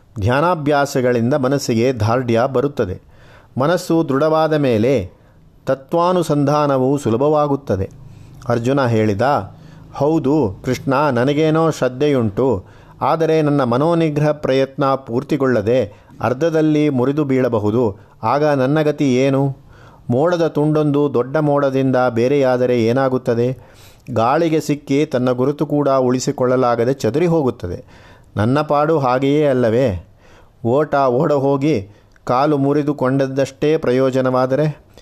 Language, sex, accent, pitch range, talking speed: Kannada, male, native, 115-150 Hz, 85 wpm